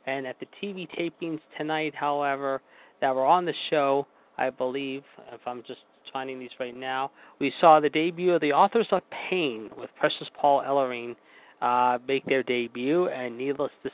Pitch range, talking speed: 125-150 Hz, 175 wpm